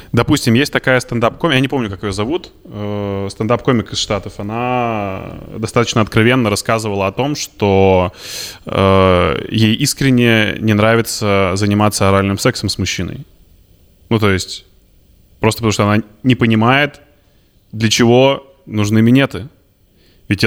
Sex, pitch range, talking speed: male, 95-120 Hz, 130 wpm